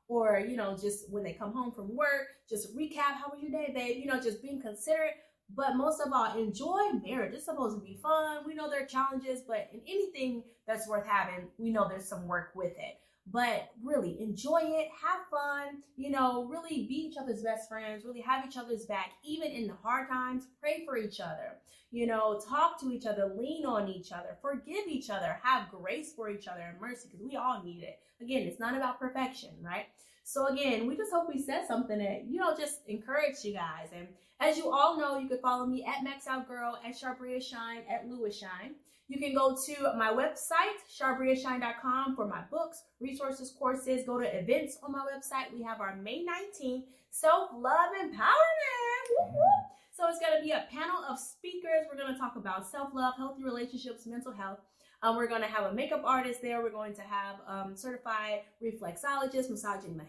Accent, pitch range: American, 220-290 Hz